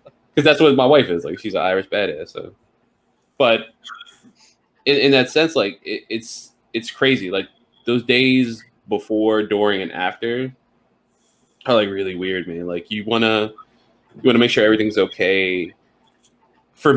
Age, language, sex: 20-39, English, male